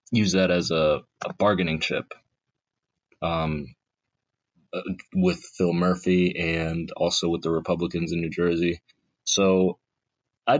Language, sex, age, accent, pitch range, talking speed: English, male, 20-39, American, 85-105 Hz, 125 wpm